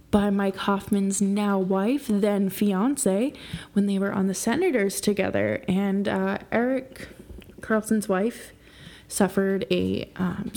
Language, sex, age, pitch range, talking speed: English, female, 20-39, 190-215 Hz, 125 wpm